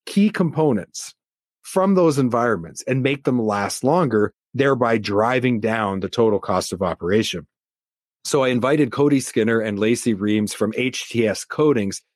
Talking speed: 145 wpm